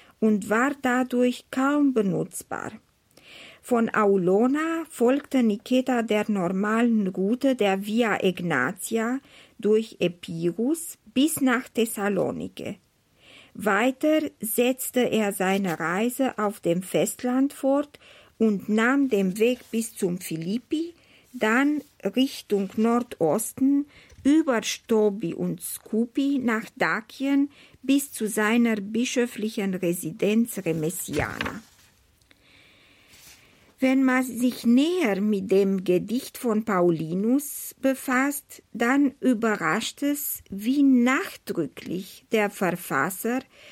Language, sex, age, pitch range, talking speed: German, female, 50-69, 200-260 Hz, 95 wpm